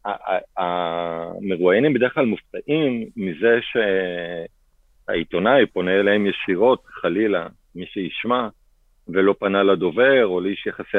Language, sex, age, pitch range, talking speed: Hebrew, male, 40-59, 90-105 Hz, 100 wpm